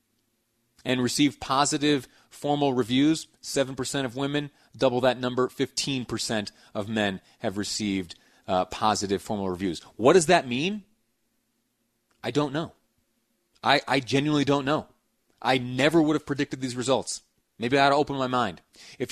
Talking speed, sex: 155 wpm, male